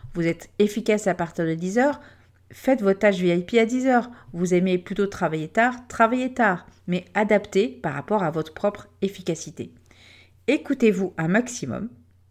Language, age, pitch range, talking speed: French, 40-59, 165-230 Hz, 150 wpm